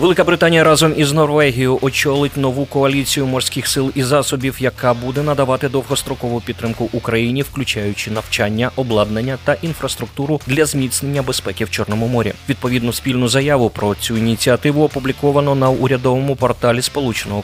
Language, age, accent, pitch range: Ukrainian, 20-39, native, 115-140 Hz